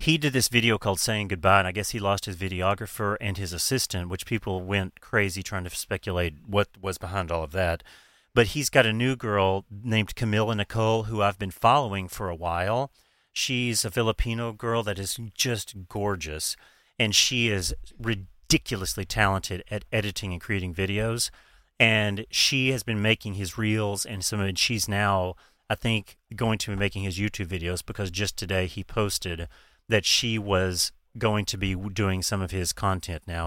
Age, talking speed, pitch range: 40-59, 185 wpm, 95-110 Hz